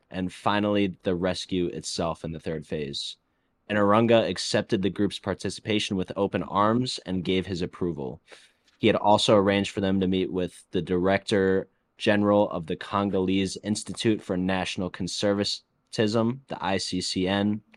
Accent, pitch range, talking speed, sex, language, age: American, 90-105 Hz, 140 wpm, male, English, 20-39